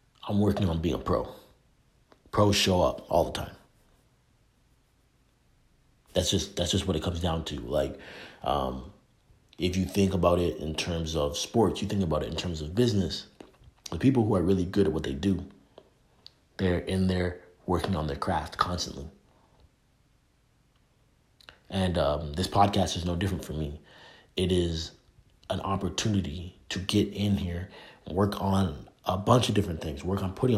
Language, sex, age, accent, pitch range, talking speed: English, male, 30-49, American, 85-105 Hz, 170 wpm